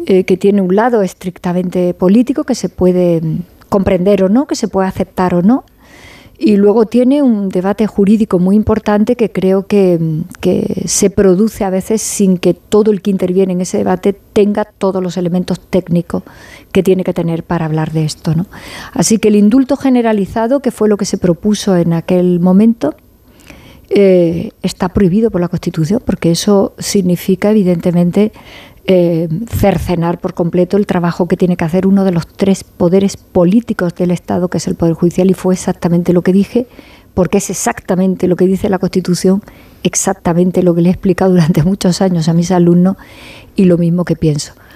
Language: Spanish